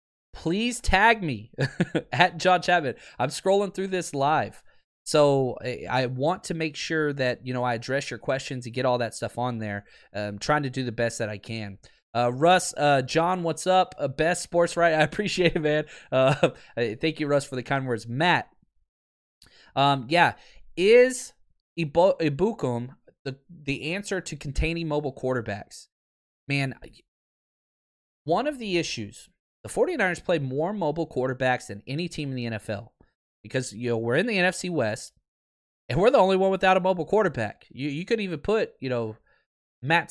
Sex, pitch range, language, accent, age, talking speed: male, 120-165 Hz, English, American, 20-39, 175 wpm